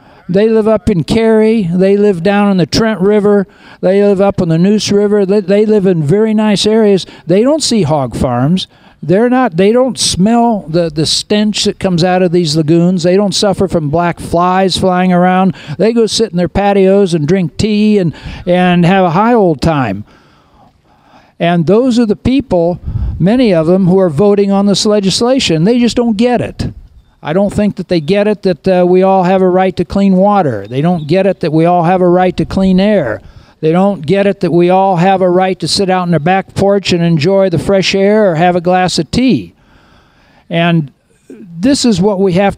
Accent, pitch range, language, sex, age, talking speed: American, 170-205 Hz, English, male, 60-79, 215 wpm